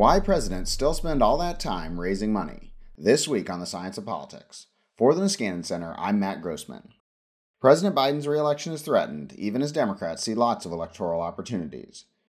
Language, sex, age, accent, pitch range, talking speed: English, male, 30-49, American, 90-150 Hz, 175 wpm